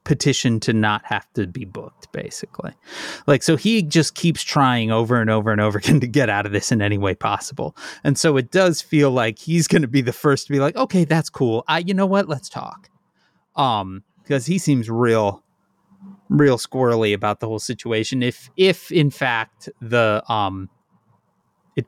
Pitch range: 110-150 Hz